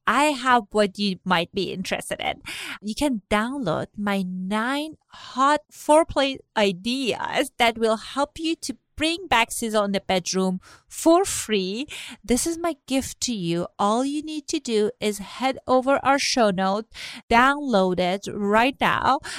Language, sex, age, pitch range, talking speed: English, female, 30-49, 200-265 Hz, 155 wpm